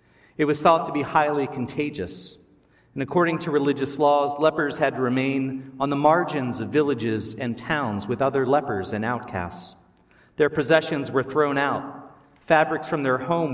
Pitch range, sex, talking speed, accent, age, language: 115-150 Hz, male, 165 wpm, American, 40-59, English